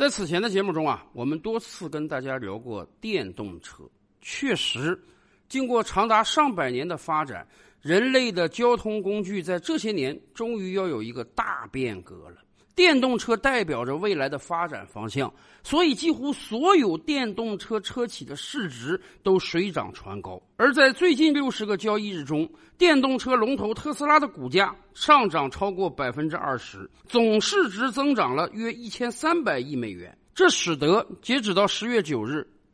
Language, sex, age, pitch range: Chinese, male, 50-69, 155-260 Hz